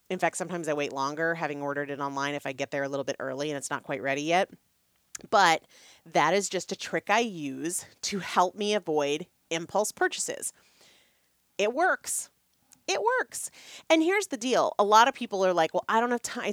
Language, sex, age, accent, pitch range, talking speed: English, female, 30-49, American, 165-240 Hz, 205 wpm